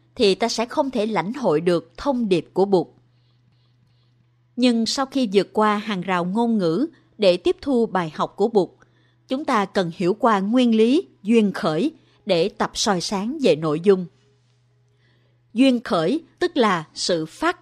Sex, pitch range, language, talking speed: female, 170-235 Hz, Vietnamese, 170 wpm